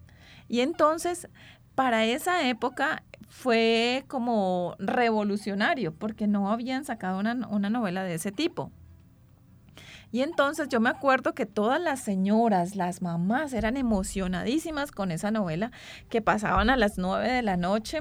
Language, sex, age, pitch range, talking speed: English, female, 30-49, 200-255 Hz, 140 wpm